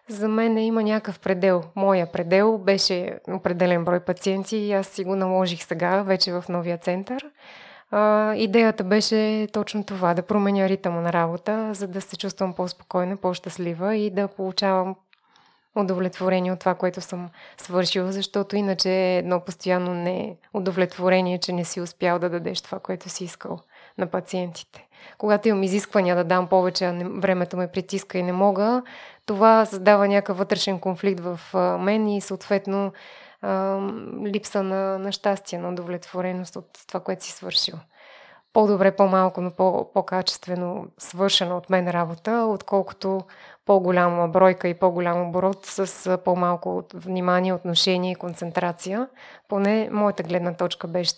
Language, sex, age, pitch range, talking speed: Bulgarian, female, 20-39, 180-205 Hz, 140 wpm